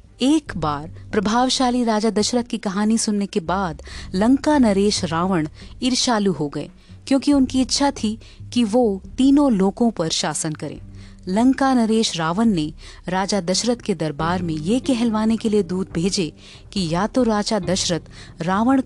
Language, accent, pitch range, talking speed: Hindi, native, 160-230 Hz, 150 wpm